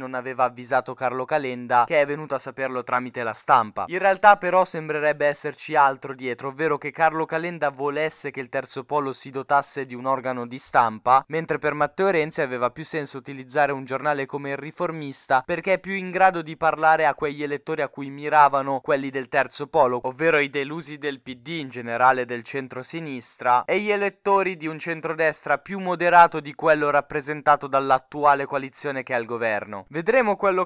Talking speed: 185 wpm